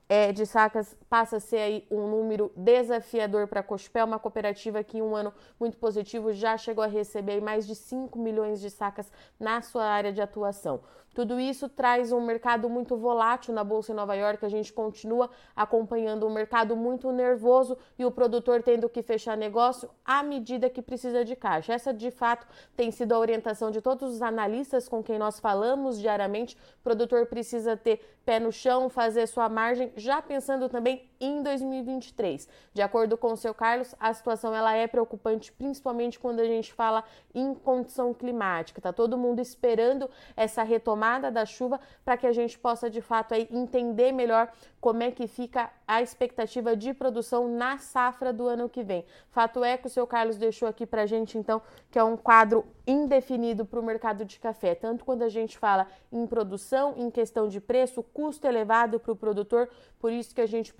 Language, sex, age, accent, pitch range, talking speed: Portuguese, female, 20-39, Brazilian, 220-245 Hz, 190 wpm